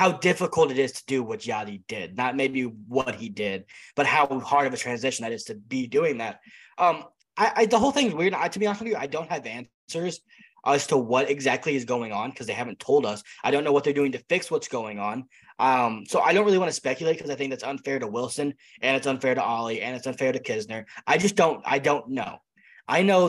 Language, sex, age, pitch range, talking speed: English, male, 20-39, 125-165 Hz, 260 wpm